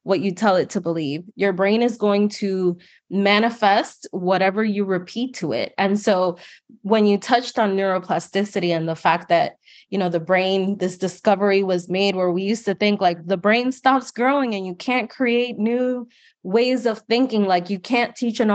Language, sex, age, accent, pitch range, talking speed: English, female, 20-39, American, 185-240 Hz, 190 wpm